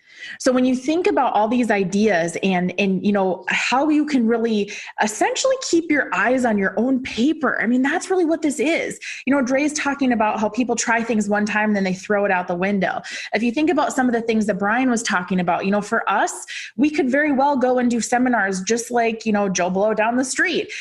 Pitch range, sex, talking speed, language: 200-260 Hz, female, 240 wpm, English